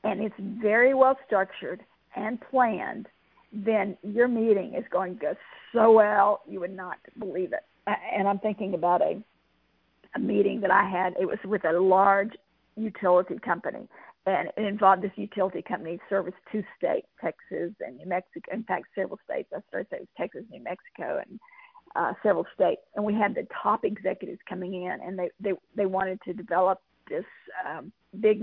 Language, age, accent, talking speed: English, 50-69, American, 180 wpm